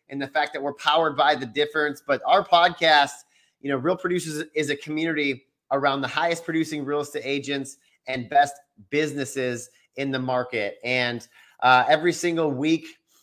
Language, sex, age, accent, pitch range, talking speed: English, male, 30-49, American, 130-150 Hz, 170 wpm